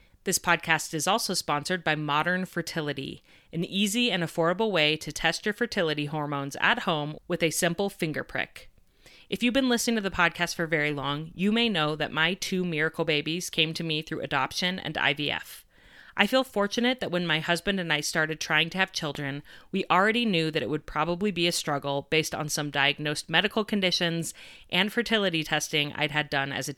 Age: 30-49